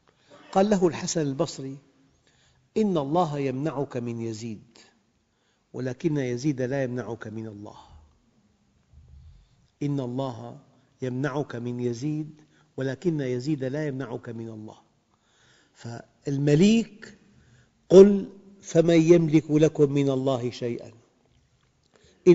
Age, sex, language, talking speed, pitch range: 50-69, male, Arabic, 90 wpm, 125-175 Hz